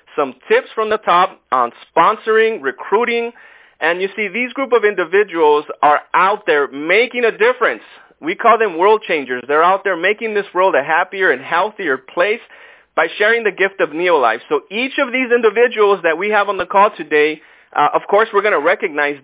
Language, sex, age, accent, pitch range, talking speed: English, male, 30-49, American, 180-255 Hz, 195 wpm